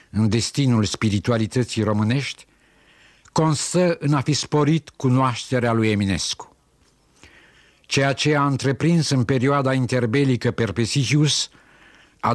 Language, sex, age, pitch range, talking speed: Romanian, male, 60-79, 115-135 Hz, 100 wpm